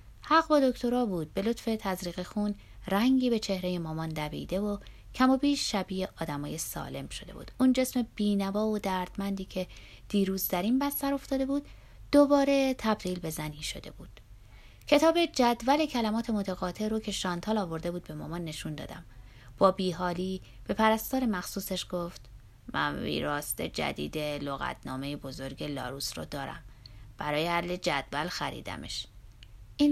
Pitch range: 145-220 Hz